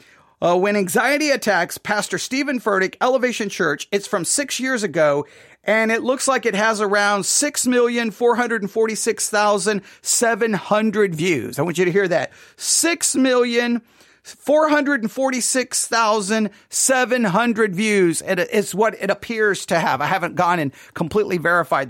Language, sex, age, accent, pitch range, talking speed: English, male, 40-59, American, 195-255 Hz, 120 wpm